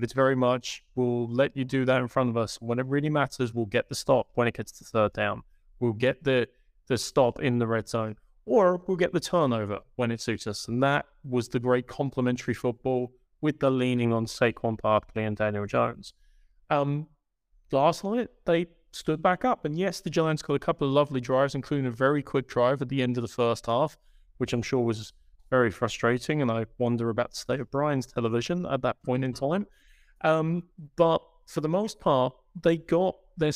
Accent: British